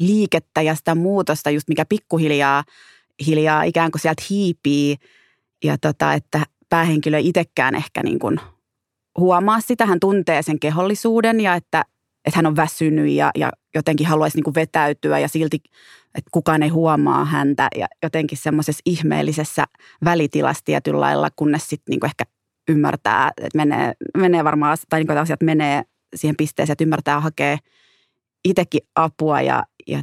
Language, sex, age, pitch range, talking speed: Finnish, female, 20-39, 150-170 Hz, 155 wpm